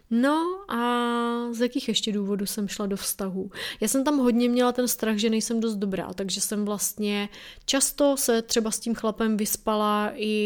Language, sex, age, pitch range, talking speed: Czech, female, 20-39, 200-245 Hz, 185 wpm